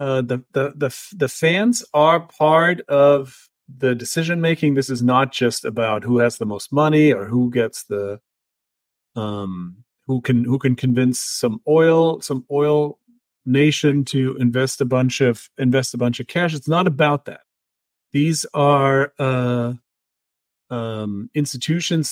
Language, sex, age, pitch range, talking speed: English, male, 40-59, 130-165 Hz, 150 wpm